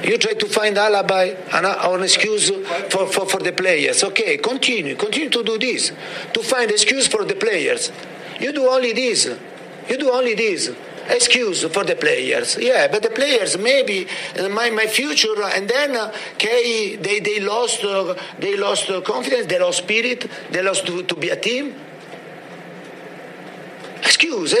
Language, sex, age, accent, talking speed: English, male, 50-69, Italian, 160 wpm